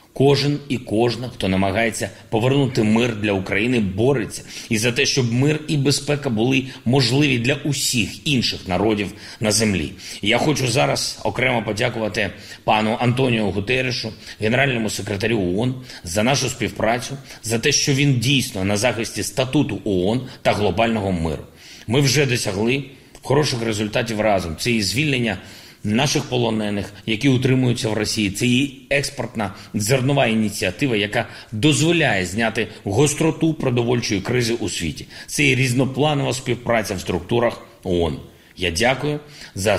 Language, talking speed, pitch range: Ukrainian, 135 wpm, 95-130 Hz